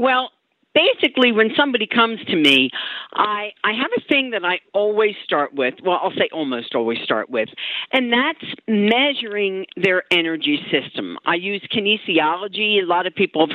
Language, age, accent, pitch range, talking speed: English, 50-69, American, 160-230 Hz, 170 wpm